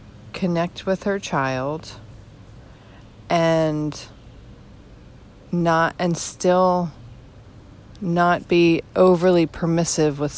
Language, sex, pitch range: English, female, 130-170 Hz